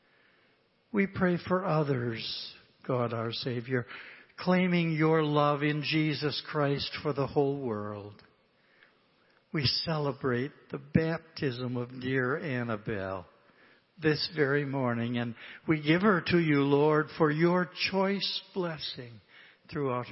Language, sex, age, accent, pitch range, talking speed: English, male, 60-79, American, 130-170 Hz, 115 wpm